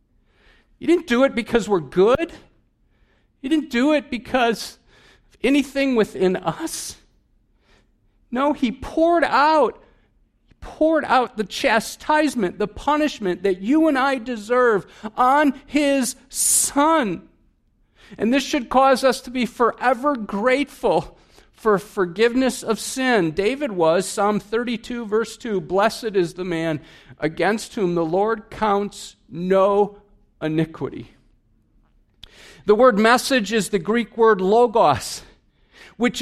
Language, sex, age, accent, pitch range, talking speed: English, male, 50-69, American, 205-275 Hz, 125 wpm